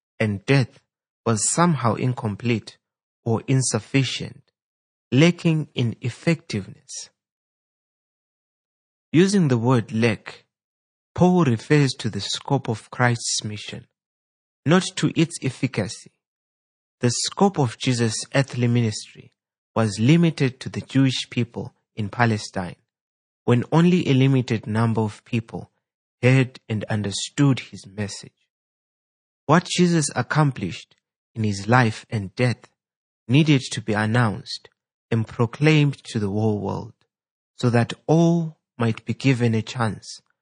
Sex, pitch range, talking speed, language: male, 110-140 Hz, 115 wpm, English